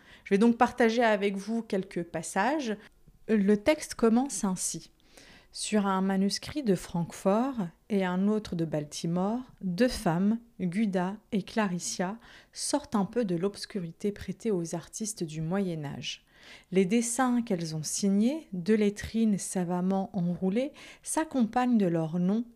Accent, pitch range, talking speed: French, 185-235 Hz, 135 wpm